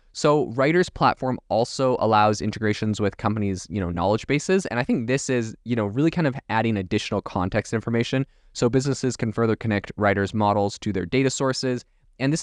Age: 20-39